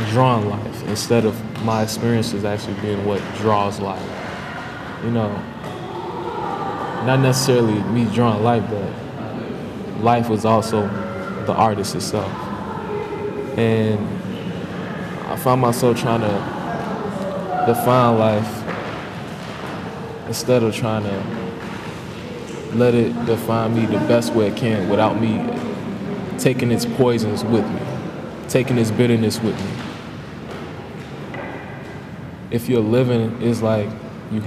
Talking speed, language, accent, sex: 110 wpm, English, American, male